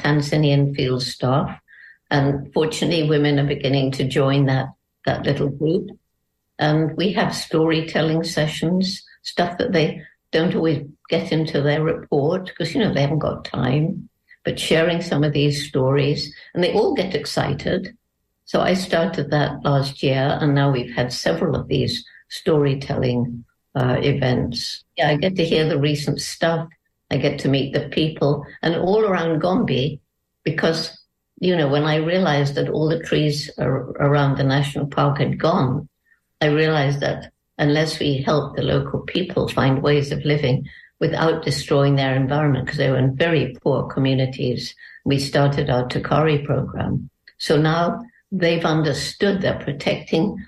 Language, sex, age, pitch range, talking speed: English, female, 60-79, 140-160 Hz, 155 wpm